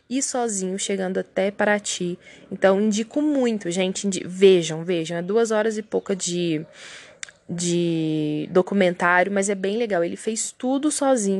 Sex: female